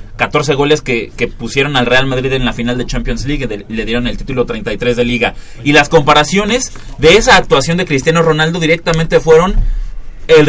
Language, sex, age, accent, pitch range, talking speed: Spanish, male, 30-49, Mexican, 125-160 Hz, 195 wpm